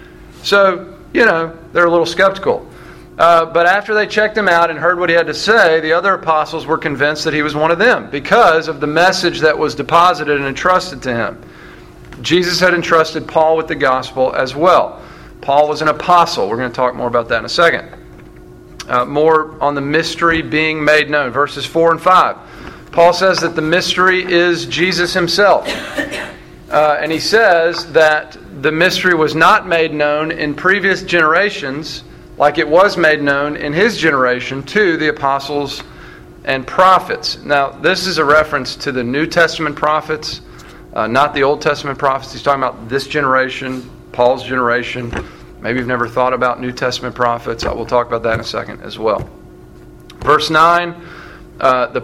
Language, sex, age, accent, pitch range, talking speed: English, male, 40-59, American, 125-170 Hz, 180 wpm